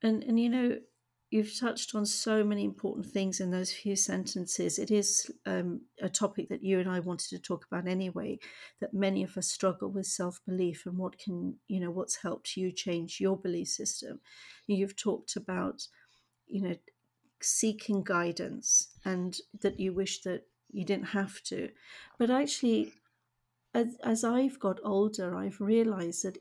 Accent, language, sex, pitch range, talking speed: British, English, female, 185-210 Hz, 170 wpm